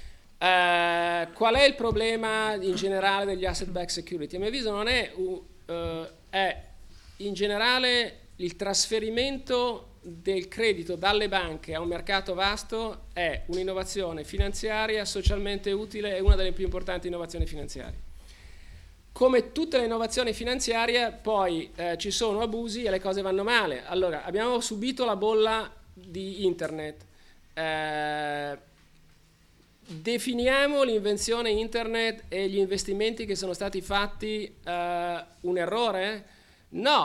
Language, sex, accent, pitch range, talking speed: Italian, male, native, 175-215 Hz, 130 wpm